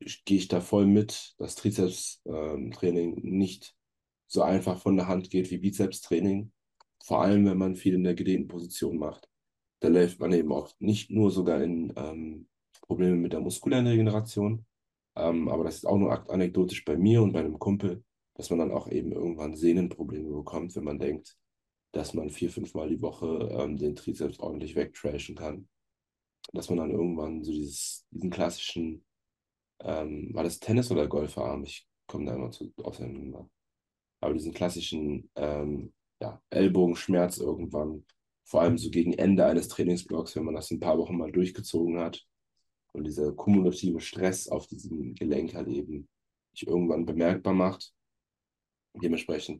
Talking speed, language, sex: 165 wpm, German, male